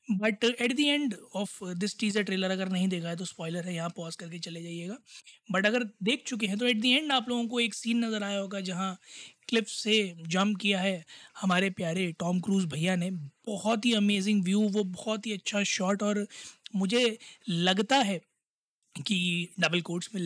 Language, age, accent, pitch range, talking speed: Hindi, 20-39, native, 195-230 Hz, 195 wpm